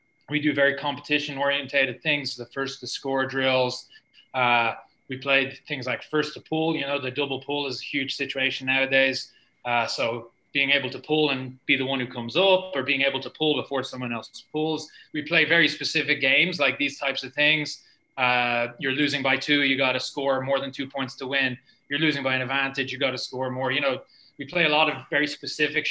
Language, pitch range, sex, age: English, 135-155 Hz, male, 20-39